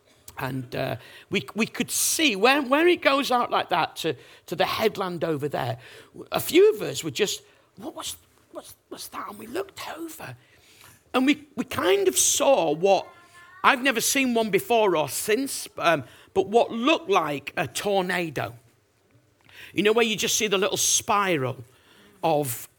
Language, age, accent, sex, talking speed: English, 50-69, British, male, 170 wpm